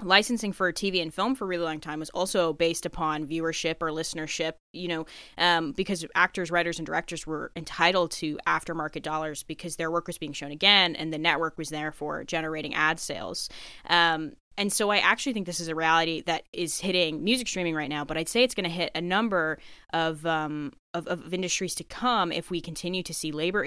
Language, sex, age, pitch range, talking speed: English, female, 10-29, 160-185 Hz, 215 wpm